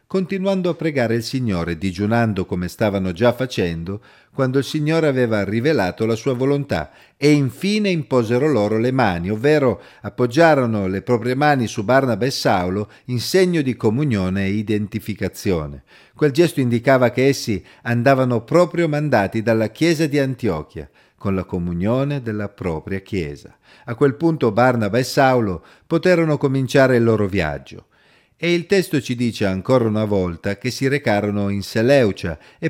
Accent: native